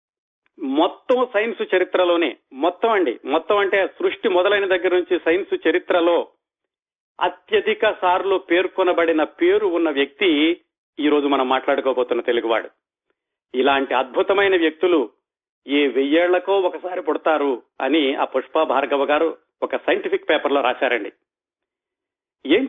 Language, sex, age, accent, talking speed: Telugu, male, 40-59, native, 105 wpm